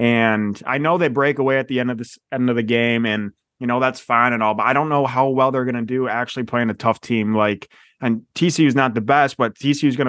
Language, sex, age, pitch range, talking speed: English, male, 20-39, 115-135 Hz, 285 wpm